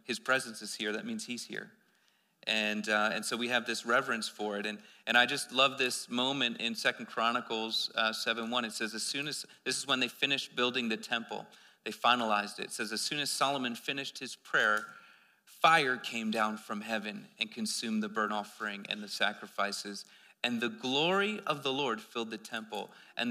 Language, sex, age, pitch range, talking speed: English, male, 40-59, 110-130 Hz, 200 wpm